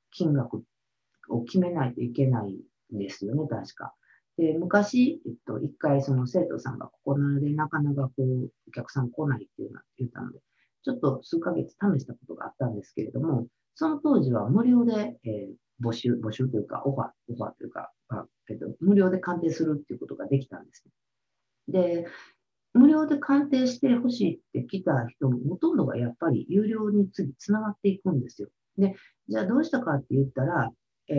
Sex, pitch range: female, 130-205 Hz